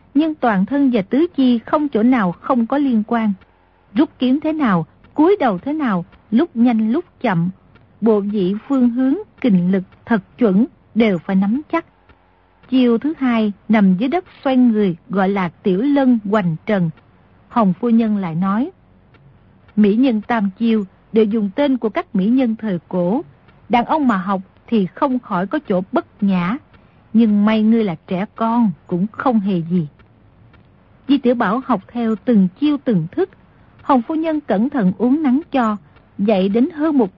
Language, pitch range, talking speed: Vietnamese, 195-260 Hz, 180 wpm